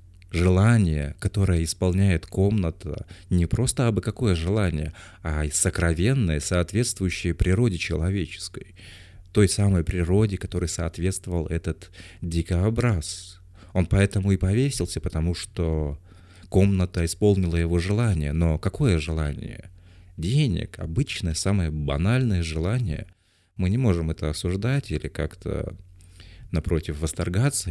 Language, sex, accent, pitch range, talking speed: Russian, male, native, 85-100 Hz, 105 wpm